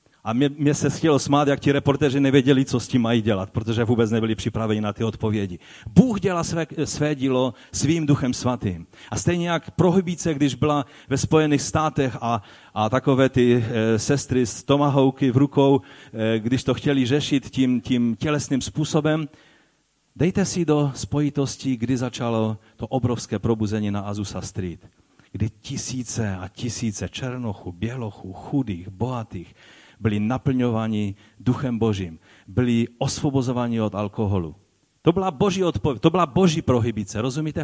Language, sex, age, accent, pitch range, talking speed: Czech, male, 40-59, native, 110-155 Hz, 150 wpm